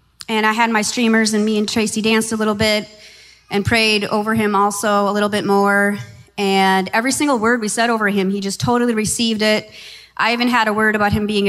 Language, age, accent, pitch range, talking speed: English, 20-39, American, 195-225 Hz, 225 wpm